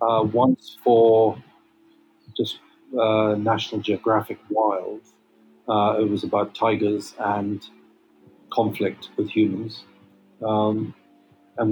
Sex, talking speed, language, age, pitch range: male, 95 wpm, English, 40-59, 105-120 Hz